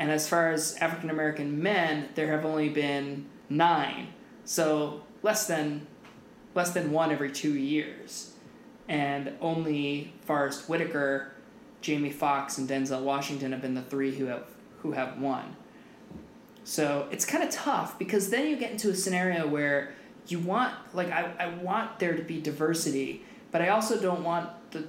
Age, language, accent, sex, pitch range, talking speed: 20-39, English, American, male, 140-180 Hz, 160 wpm